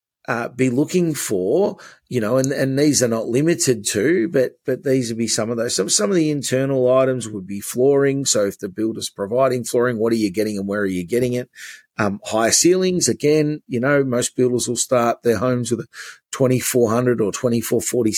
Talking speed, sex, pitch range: 210 wpm, male, 110-130 Hz